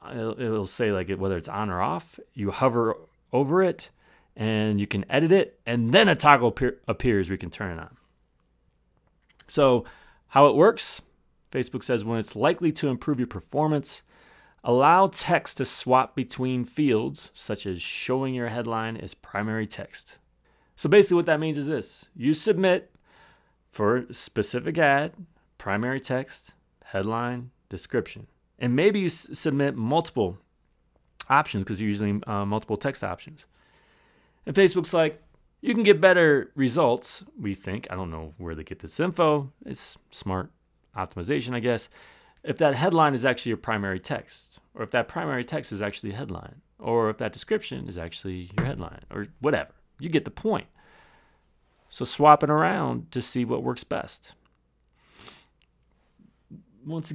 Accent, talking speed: American, 160 wpm